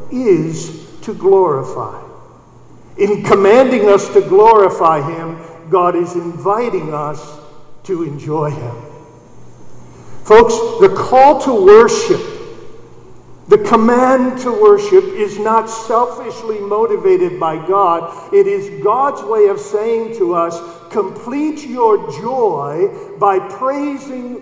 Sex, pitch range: male, 185-305 Hz